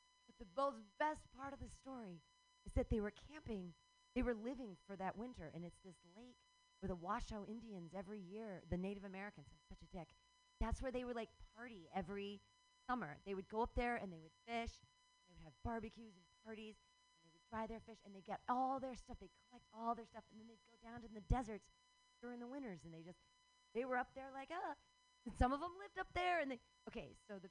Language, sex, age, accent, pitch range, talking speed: English, female, 30-49, American, 200-290 Hz, 235 wpm